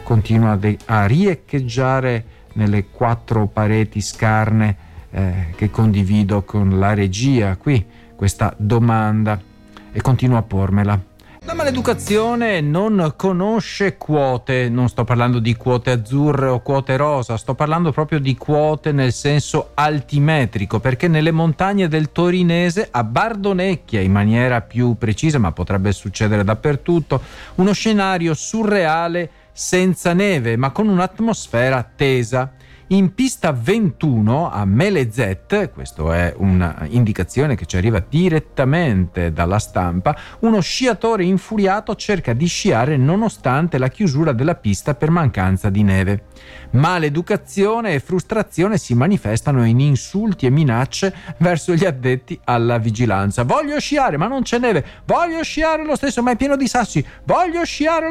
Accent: native